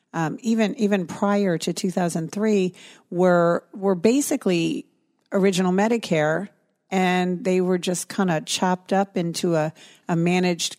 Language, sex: English, female